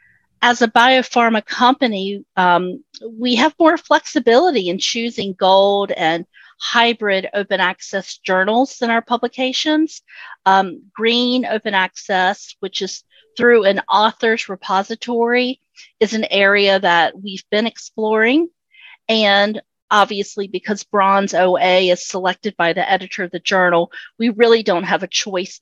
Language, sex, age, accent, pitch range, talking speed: English, female, 40-59, American, 185-235 Hz, 130 wpm